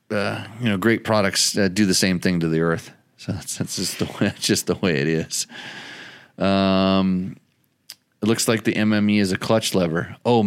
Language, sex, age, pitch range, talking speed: English, male, 30-49, 85-110 Hz, 200 wpm